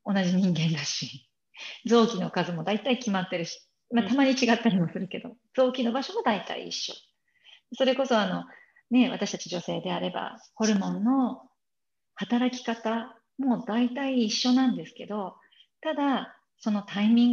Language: Japanese